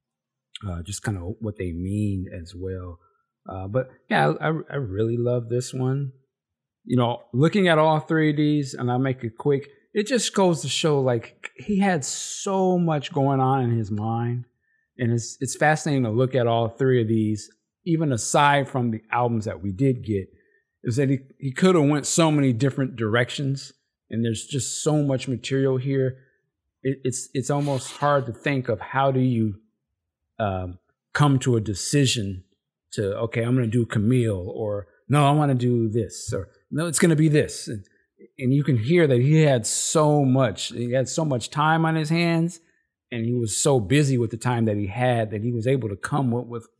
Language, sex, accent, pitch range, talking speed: English, male, American, 115-145 Hz, 200 wpm